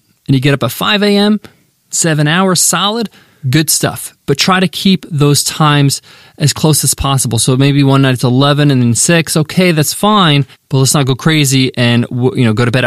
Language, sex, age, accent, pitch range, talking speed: English, male, 20-39, American, 130-155 Hz, 210 wpm